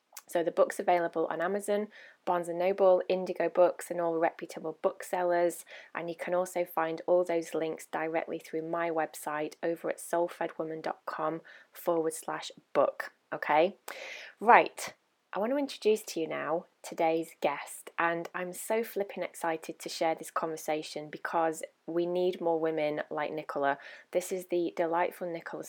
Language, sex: English, female